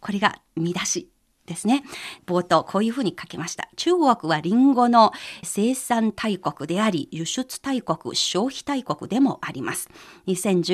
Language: Japanese